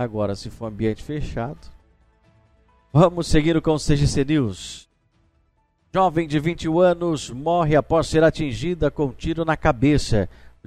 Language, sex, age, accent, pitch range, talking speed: Portuguese, male, 50-69, Brazilian, 110-145 Hz, 140 wpm